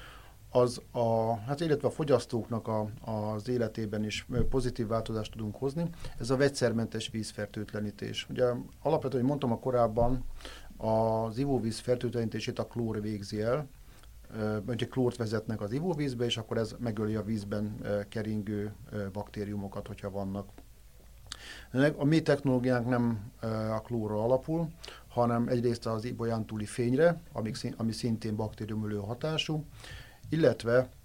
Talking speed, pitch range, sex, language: 120 wpm, 110-130 Hz, male, Hungarian